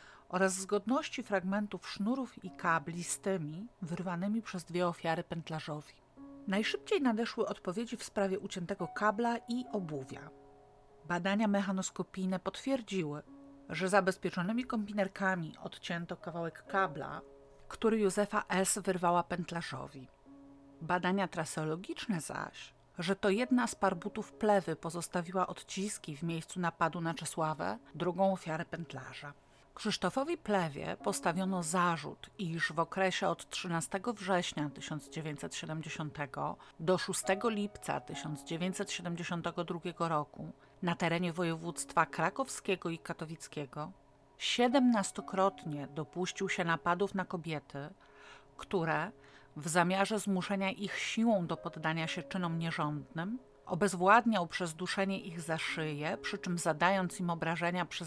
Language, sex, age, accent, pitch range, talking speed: Polish, female, 40-59, native, 160-195 Hz, 110 wpm